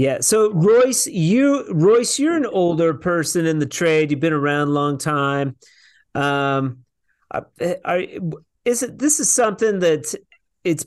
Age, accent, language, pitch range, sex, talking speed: 40-59, American, English, 135-185 Hz, male, 155 wpm